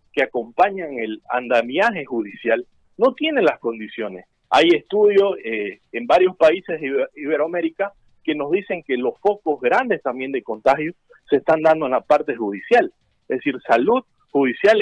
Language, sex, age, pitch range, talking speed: Spanish, male, 50-69, 155-230 Hz, 155 wpm